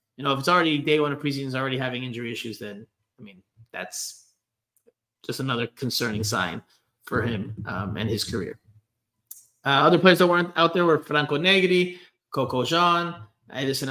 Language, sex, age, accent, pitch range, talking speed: English, male, 30-49, American, 125-180 Hz, 175 wpm